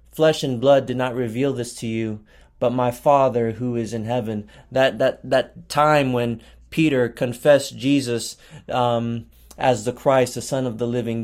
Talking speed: 175 wpm